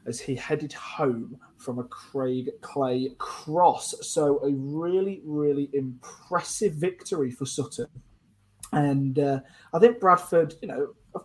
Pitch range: 130-175 Hz